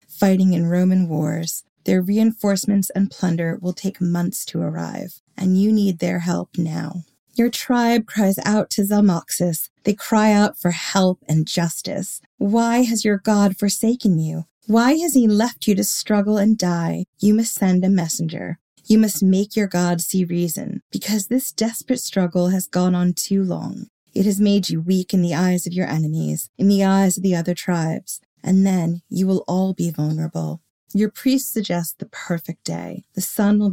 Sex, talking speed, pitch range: female, 180 wpm, 170-205 Hz